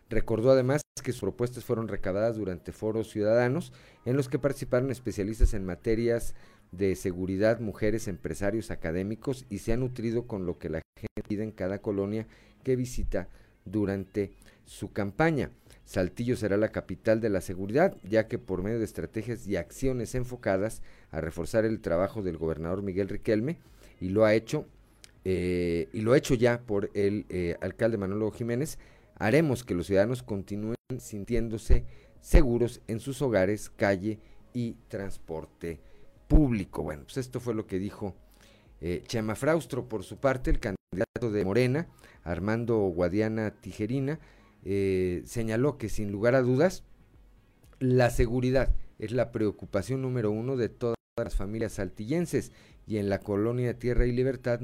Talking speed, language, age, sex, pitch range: 150 wpm, Spanish, 40-59, male, 100-120 Hz